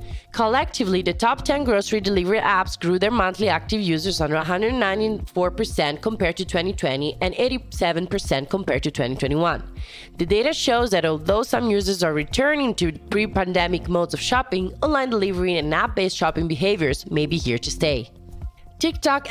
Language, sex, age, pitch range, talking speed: English, female, 20-39, 165-220 Hz, 155 wpm